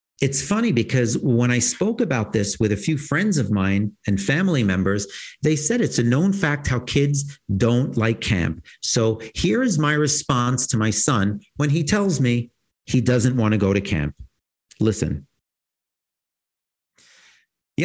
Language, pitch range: English, 100-145 Hz